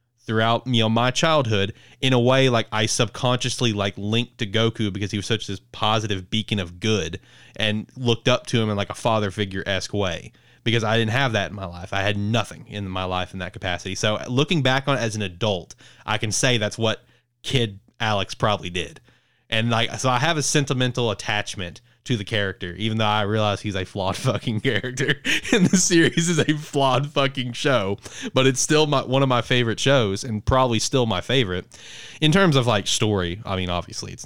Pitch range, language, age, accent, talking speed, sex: 100-125 Hz, English, 20-39, American, 210 wpm, male